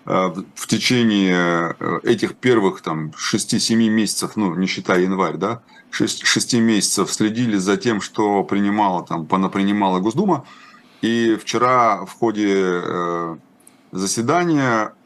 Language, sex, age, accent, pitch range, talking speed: Russian, male, 30-49, native, 95-120 Hz, 105 wpm